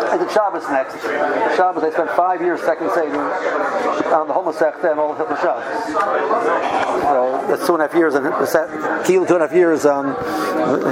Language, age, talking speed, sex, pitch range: English, 60-79, 115 wpm, male, 170-230 Hz